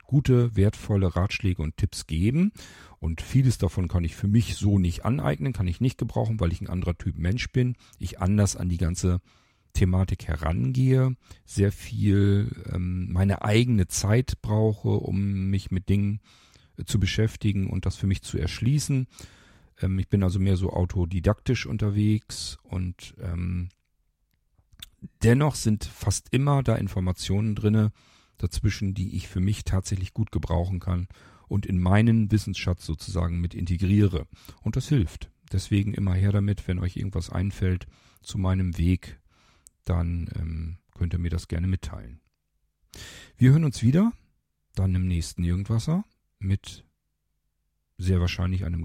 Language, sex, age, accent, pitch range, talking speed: German, male, 40-59, German, 90-105 Hz, 145 wpm